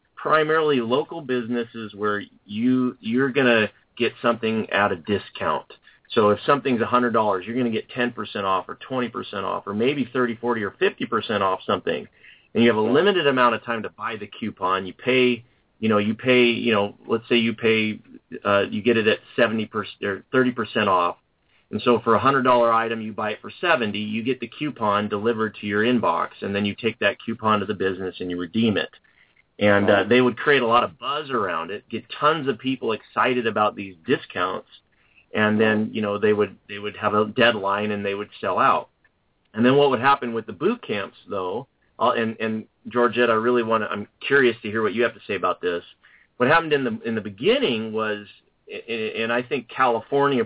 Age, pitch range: 30-49, 105-120 Hz